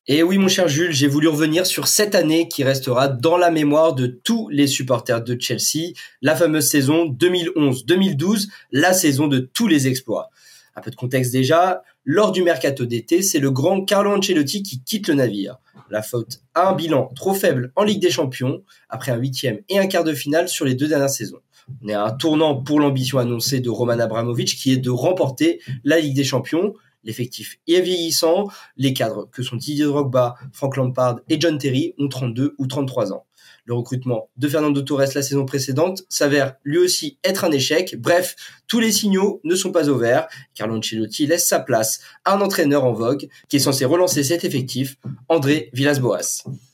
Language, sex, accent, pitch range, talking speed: French, male, French, 130-175 Hz, 195 wpm